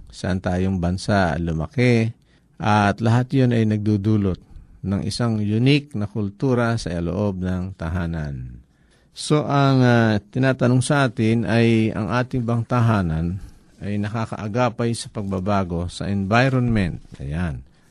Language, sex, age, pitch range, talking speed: Filipino, male, 50-69, 90-120 Hz, 120 wpm